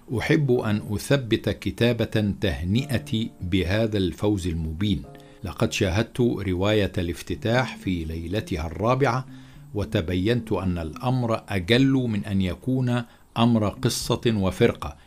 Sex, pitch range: male, 95-120 Hz